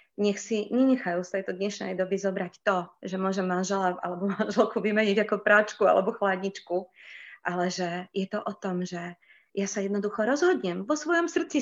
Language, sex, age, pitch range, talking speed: Slovak, female, 30-49, 185-215 Hz, 175 wpm